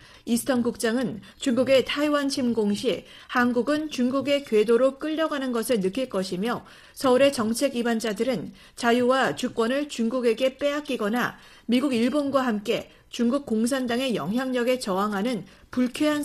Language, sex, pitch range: Korean, female, 230-275 Hz